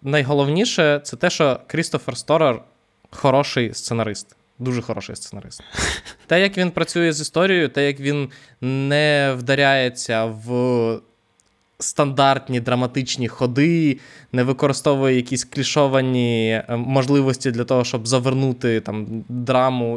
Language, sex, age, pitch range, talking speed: Ukrainian, male, 20-39, 125-150 Hz, 115 wpm